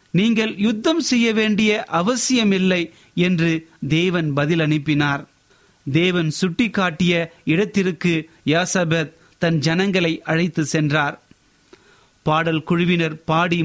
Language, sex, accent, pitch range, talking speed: Tamil, male, native, 160-195 Hz, 85 wpm